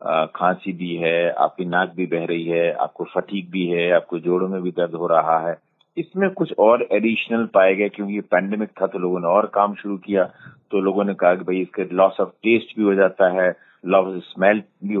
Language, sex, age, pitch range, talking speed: Hindi, male, 40-59, 90-115 Hz, 225 wpm